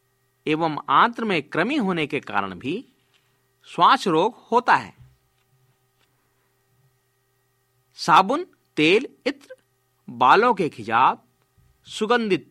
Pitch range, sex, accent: 130-205 Hz, male, native